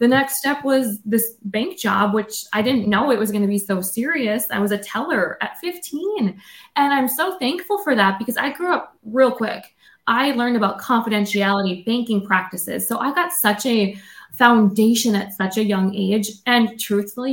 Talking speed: 185 wpm